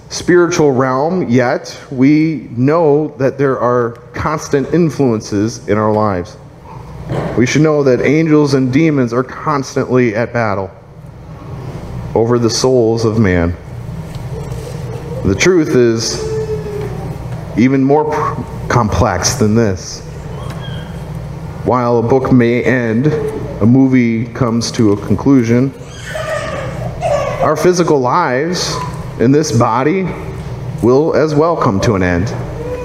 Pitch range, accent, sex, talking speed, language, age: 125-150 Hz, American, male, 110 wpm, English, 30-49